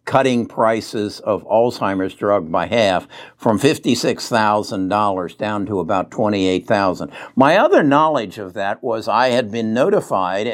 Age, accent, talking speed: 60-79, American, 130 wpm